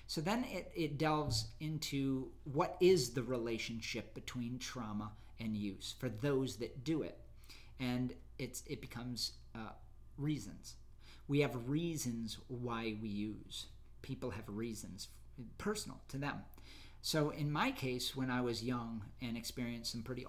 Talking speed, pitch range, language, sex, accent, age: 145 wpm, 110-130 Hz, English, male, American, 40-59